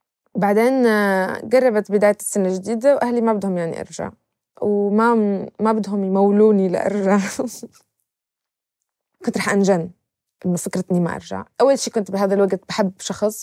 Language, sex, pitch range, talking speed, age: Arabic, female, 185-220 Hz, 130 wpm, 20-39